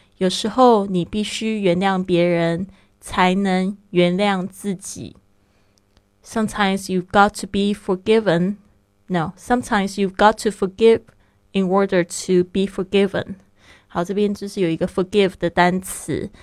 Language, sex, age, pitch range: Chinese, female, 20-39, 175-205 Hz